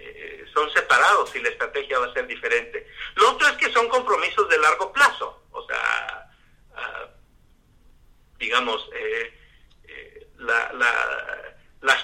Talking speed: 120 wpm